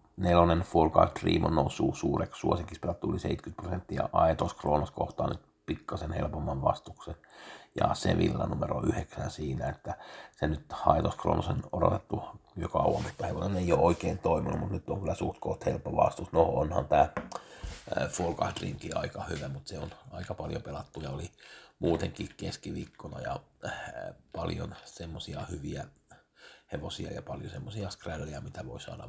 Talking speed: 150 wpm